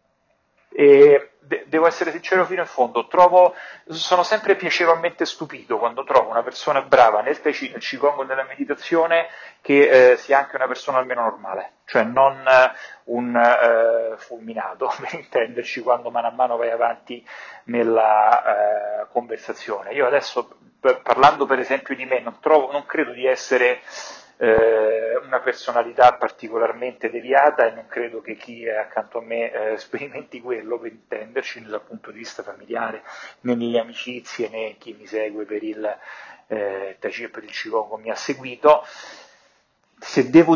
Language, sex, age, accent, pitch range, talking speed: Italian, male, 40-59, native, 115-145 Hz, 155 wpm